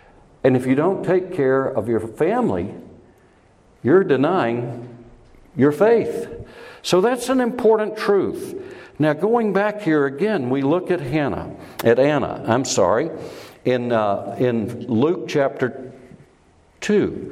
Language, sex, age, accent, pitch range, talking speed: English, male, 60-79, American, 130-195 Hz, 130 wpm